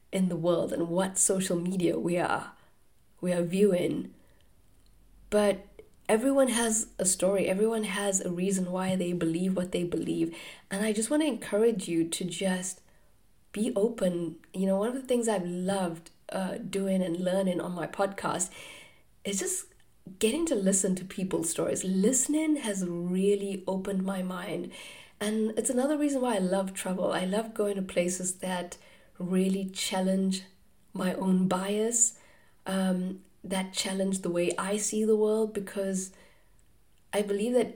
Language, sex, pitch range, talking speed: English, female, 185-225 Hz, 155 wpm